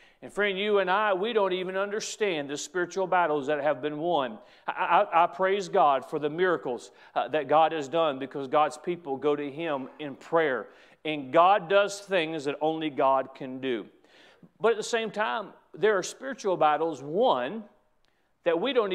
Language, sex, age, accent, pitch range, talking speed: English, male, 40-59, American, 150-190 Hz, 185 wpm